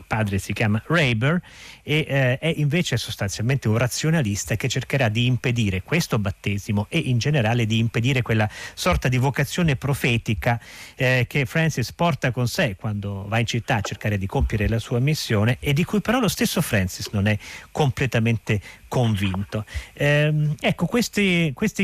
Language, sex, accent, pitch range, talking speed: Italian, male, native, 115-155 Hz, 160 wpm